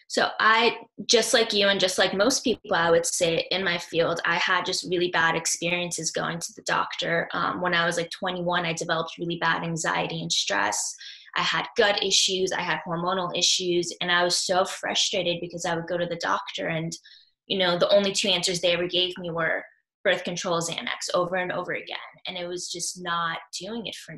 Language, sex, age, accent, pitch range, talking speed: English, female, 10-29, American, 170-190 Hz, 215 wpm